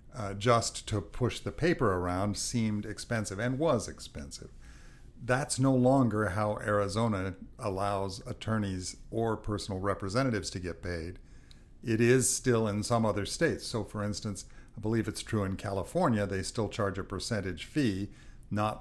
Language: English